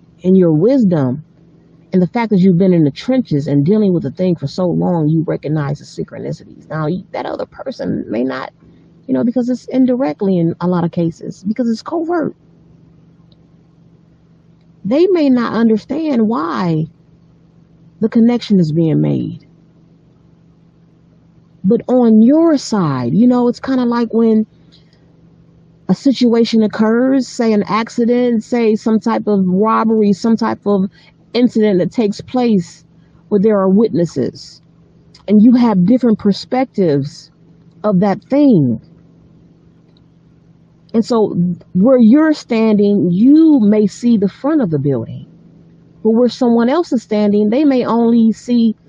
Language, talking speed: English, 145 wpm